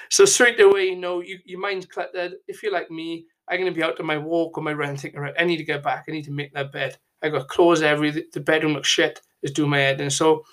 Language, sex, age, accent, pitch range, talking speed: English, male, 20-39, British, 150-180 Hz, 295 wpm